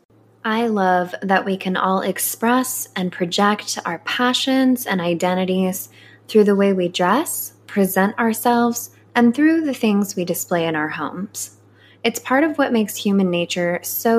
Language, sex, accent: English, female, American